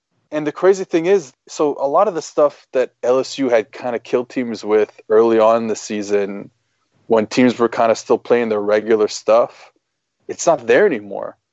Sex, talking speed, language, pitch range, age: male, 200 wpm, English, 125-180 Hz, 20-39